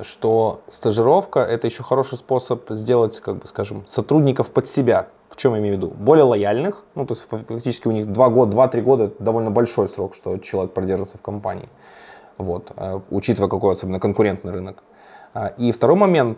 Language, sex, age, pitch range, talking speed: Russian, male, 20-39, 105-130 Hz, 185 wpm